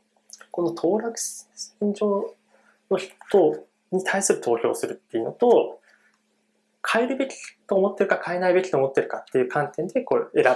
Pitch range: 135-215 Hz